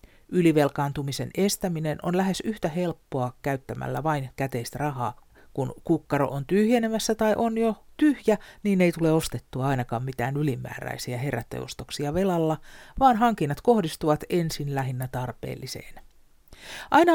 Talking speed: 120 wpm